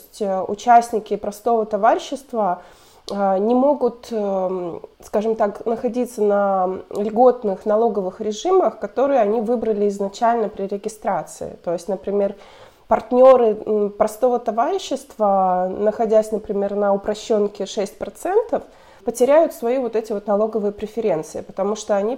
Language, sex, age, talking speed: Russian, female, 20-39, 105 wpm